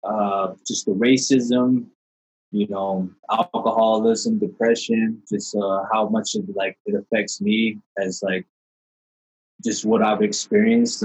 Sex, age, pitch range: male, 20-39, 105-170 Hz